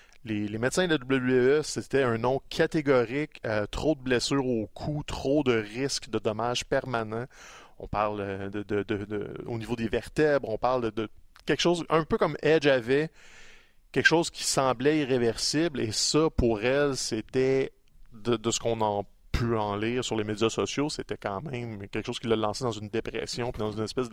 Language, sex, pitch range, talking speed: French, male, 115-145 Hz, 200 wpm